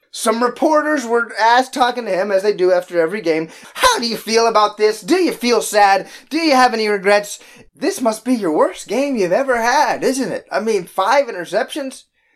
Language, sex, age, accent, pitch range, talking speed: English, male, 20-39, American, 170-275 Hz, 210 wpm